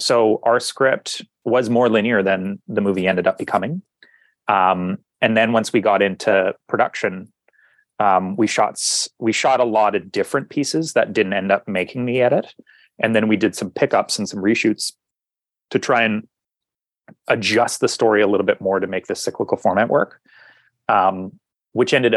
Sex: male